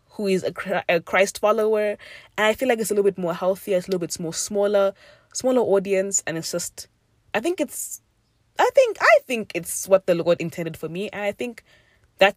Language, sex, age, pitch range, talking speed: English, female, 20-39, 140-195 Hz, 220 wpm